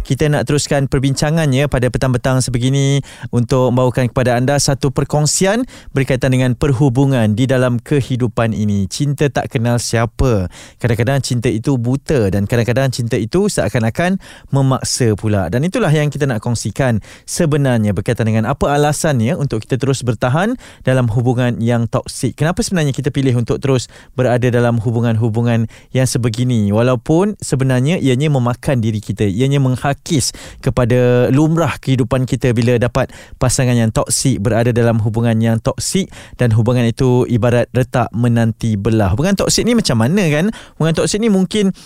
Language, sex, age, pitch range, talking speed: Malay, male, 20-39, 120-150 Hz, 150 wpm